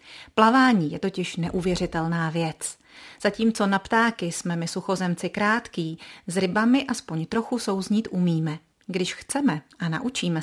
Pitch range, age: 175-210 Hz, 30-49